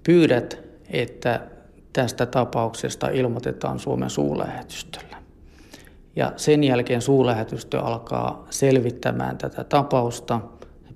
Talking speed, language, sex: 90 wpm, Finnish, male